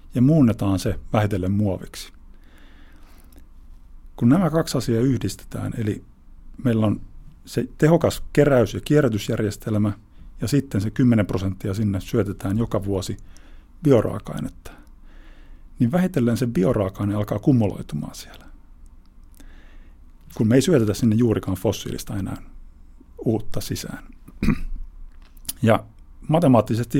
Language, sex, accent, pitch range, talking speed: Finnish, male, native, 80-120 Hz, 105 wpm